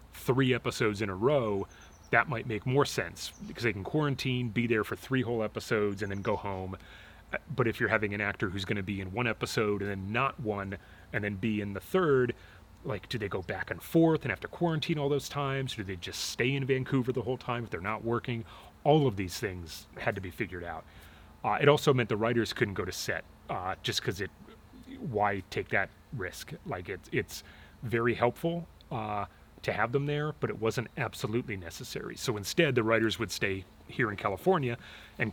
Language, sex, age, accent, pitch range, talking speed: English, male, 30-49, American, 100-125 Hz, 215 wpm